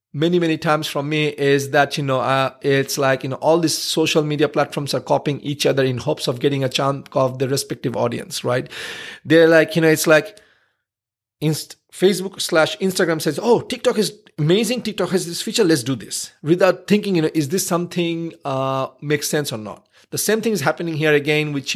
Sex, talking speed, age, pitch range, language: male, 210 wpm, 40-59, 135-175 Hz, English